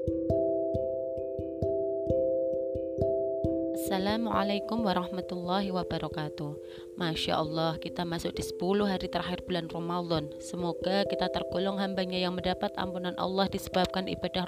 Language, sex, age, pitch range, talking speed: Indonesian, female, 20-39, 160-185 Hz, 95 wpm